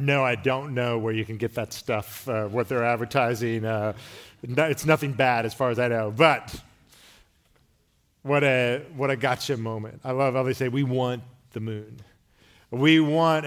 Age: 40-59